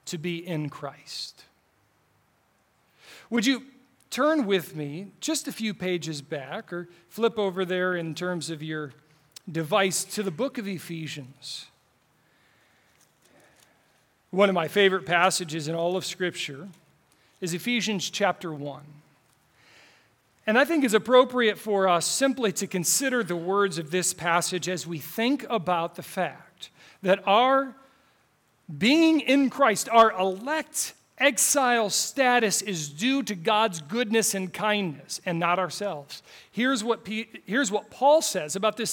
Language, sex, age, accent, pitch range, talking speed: English, male, 40-59, American, 165-225 Hz, 140 wpm